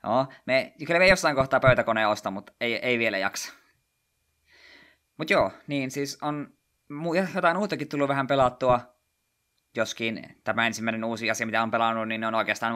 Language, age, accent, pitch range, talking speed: Finnish, 20-39, native, 105-135 Hz, 160 wpm